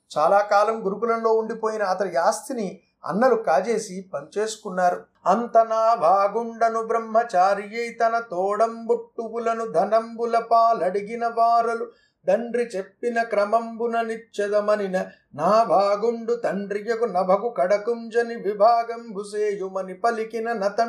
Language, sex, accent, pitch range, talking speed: Telugu, male, native, 205-235 Hz, 45 wpm